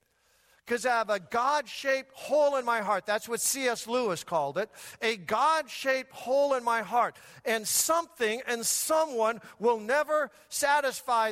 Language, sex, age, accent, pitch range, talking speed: English, male, 50-69, American, 200-265 Hz, 160 wpm